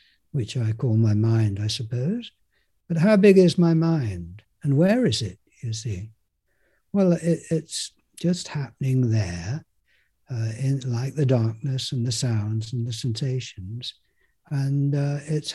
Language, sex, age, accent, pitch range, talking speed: English, male, 60-79, British, 115-155 Hz, 150 wpm